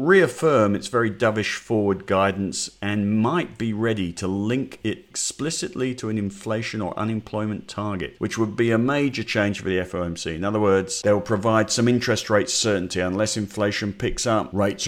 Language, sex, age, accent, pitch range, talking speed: English, male, 50-69, British, 90-105 Hz, 175 wpm